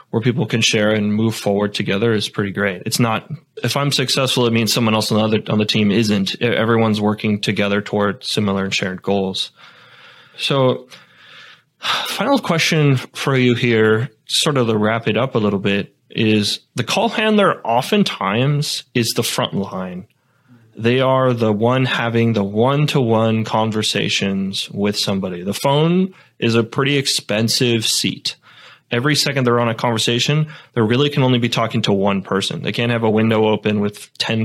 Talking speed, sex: 175 wpm, male